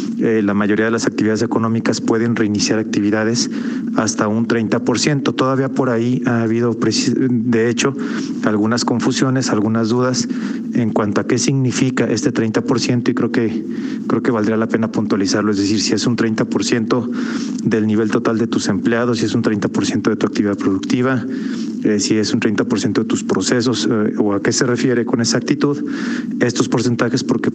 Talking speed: 170 wpm